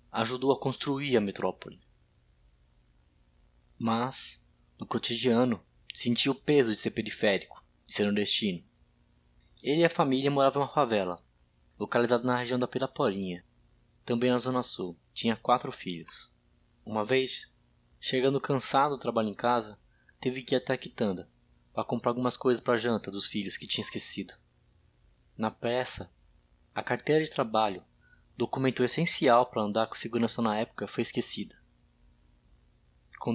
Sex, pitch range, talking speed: male, 100-135 Hz, 145 wpm